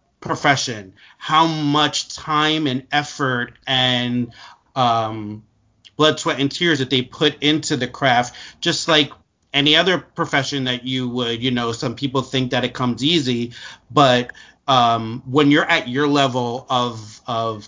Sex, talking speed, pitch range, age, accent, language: male, 150 wpm, 115-140 Hz, 30-49, American, English